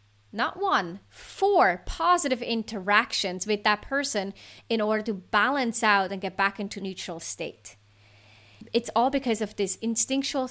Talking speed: 145 wpm